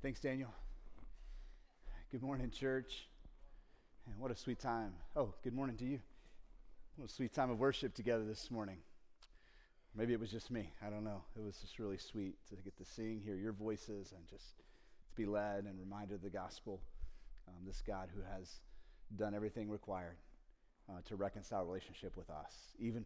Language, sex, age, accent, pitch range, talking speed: English, male, 30-49, American, 100-125 Hz, 180 wpm